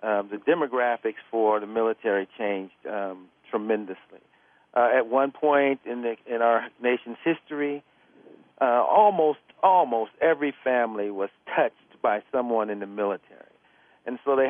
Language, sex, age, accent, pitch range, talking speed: English, male, 50-69, American, 110-130 Hz, 140 wpm